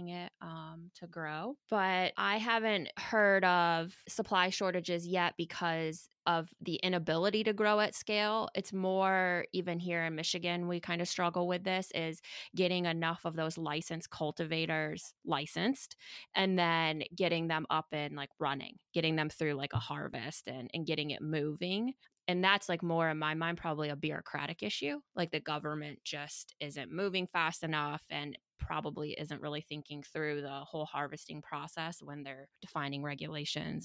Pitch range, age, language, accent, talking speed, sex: 155-180 Hz, 20-39, English, American, 165 wpm, female